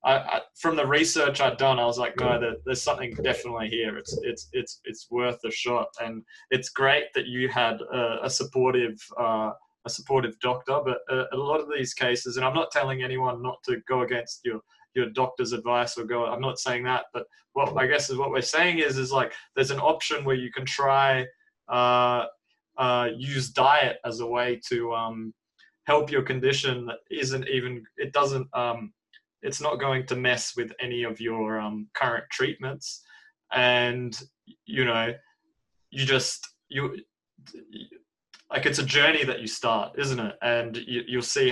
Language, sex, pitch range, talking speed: English, male, 115-135 Hz, 185 wpm